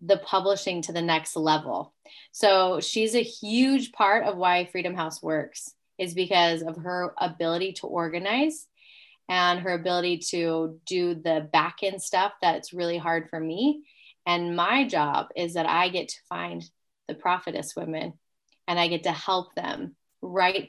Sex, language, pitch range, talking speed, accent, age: female, English, 165-200 Hz, 160 wpm, American, 20-39